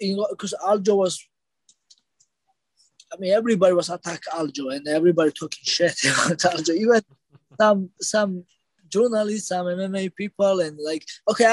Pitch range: 165-205 Hz